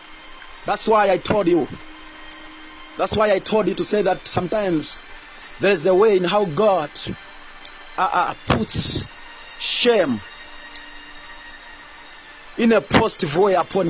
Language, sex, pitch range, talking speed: English, male, 190-255 Hz, 125 wpm